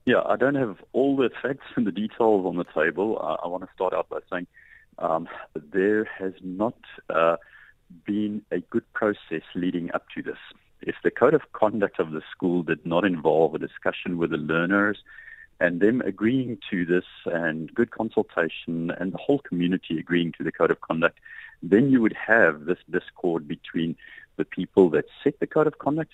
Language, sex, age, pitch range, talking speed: English, male, 40-59, 90-125 Hz, 190 wpm